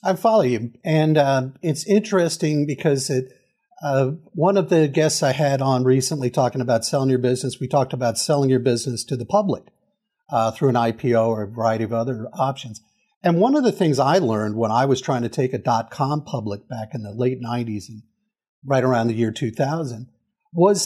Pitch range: 125-185 Hz